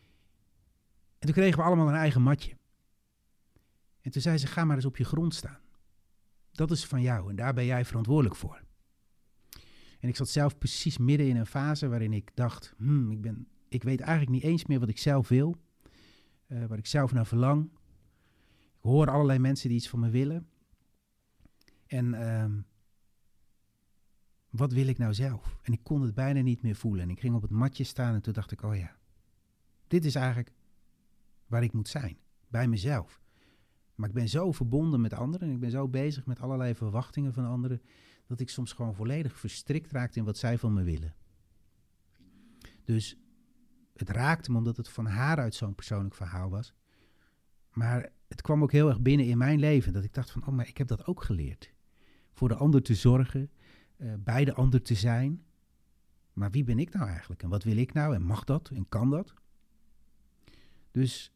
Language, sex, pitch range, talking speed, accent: Dutch, male, 105-135 Hz, 195 wpm, Dutch